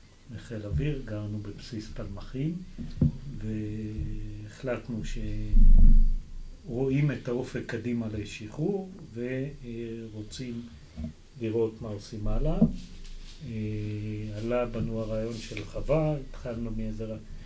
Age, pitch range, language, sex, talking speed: 40-59, 105-140 Hz, Hebrew, male, 80 wpm